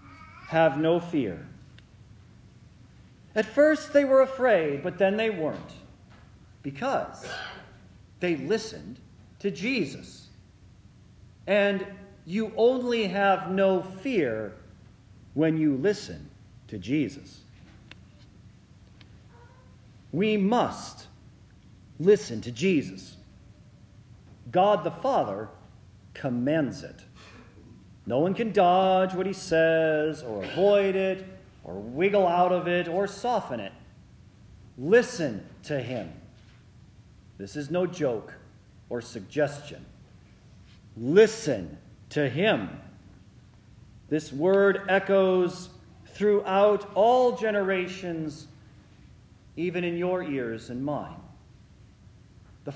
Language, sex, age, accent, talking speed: English, male, 50-69, American, 90 wpm